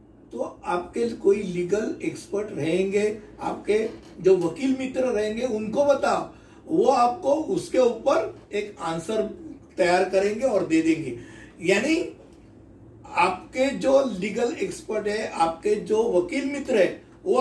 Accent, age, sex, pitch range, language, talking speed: native, 60-79, male, 185-260 Hz, Hindi, 125 wpm